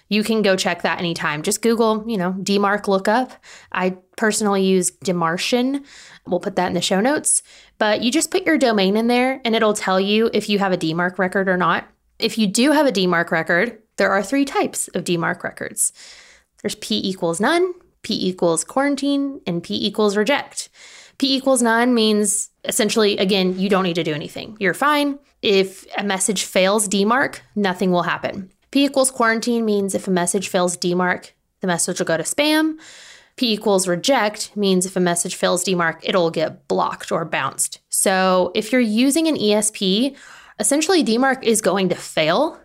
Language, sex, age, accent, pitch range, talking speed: English, female, 20-39, American, 185-230 Hz, 185 wpm